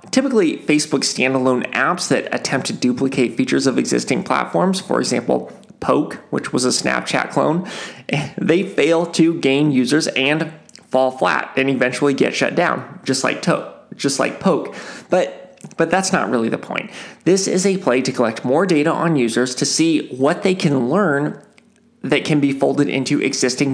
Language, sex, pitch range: English, male, 130-190 Hz